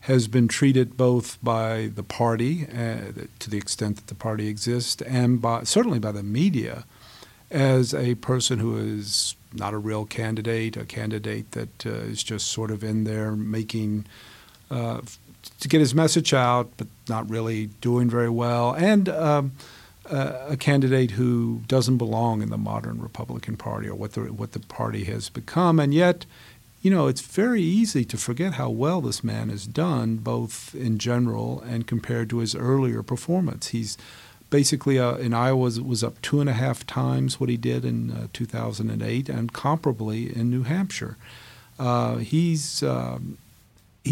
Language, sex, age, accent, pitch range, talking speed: English, male, 50-69, American, 110-130 Hz, 170 wpm